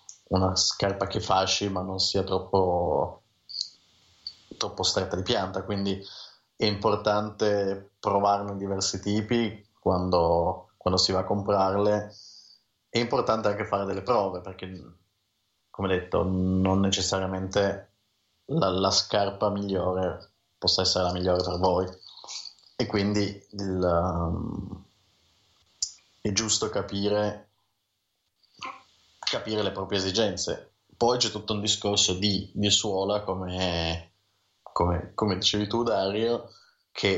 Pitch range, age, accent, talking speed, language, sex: 95-105 Hz, 30-49, native, 110 wpm, Italian, male